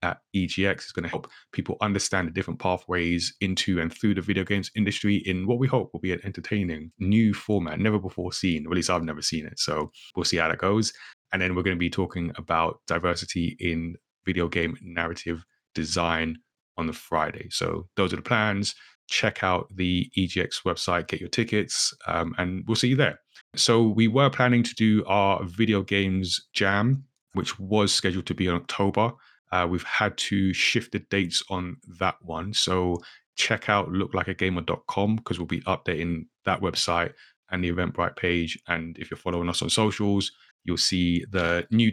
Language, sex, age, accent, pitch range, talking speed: English, male, 30-49, British, 85-105 Hz, 190 wpm